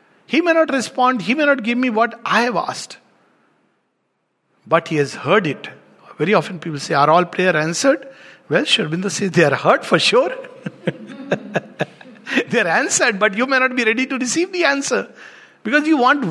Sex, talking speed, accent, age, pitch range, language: male, 185 wpm, Indian, 60-79, 165-255 Hz, English